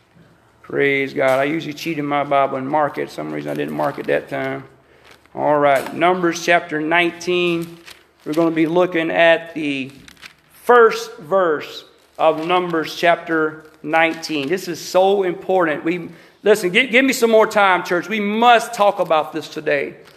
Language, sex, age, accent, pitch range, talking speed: English, male, 40-59, American, 165-230 Hz, 160 wpm